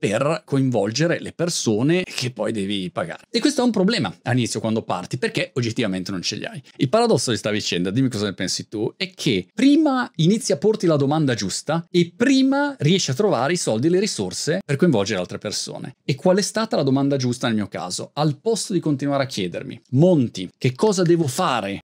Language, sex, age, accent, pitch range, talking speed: Italian, male, 30-49, native, 115-180 Hz, 210 wpm